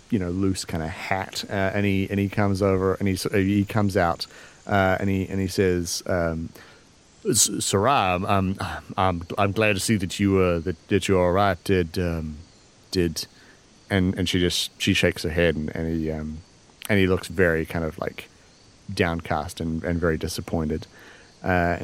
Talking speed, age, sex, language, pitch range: 190 wpm, 30-49, male, English, 90-110 Hz